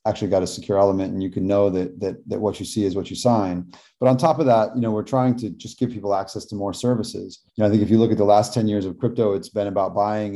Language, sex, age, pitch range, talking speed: English, male, 30-49, 95-115 Hz, 315 wpm